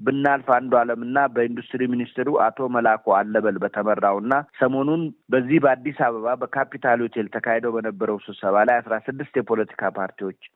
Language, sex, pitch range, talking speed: Amharic, male, 105-125 Hz, 115 wpm